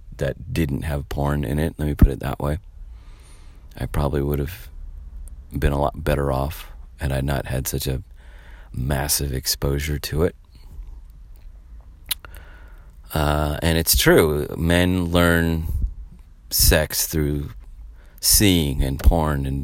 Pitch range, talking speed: 65-80 Hz, 135 wpm